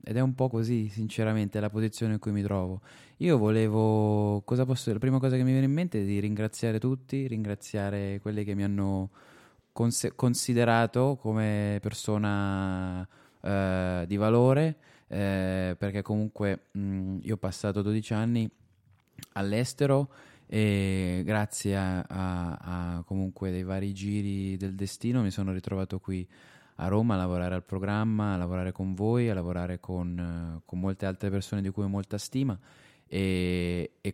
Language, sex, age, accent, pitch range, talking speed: Italian, male, 20-39, native, 95-110 Hz, 160 wpm